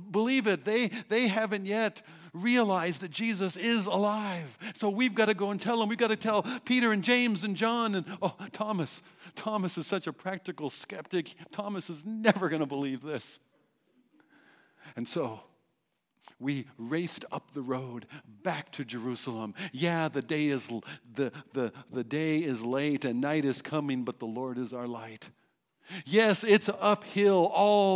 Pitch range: 145-205 Hz